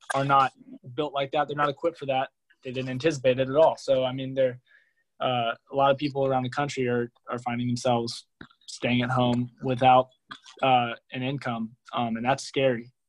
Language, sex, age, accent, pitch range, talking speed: English, male, 20-39, American, 125-145 Hz, 195 wpm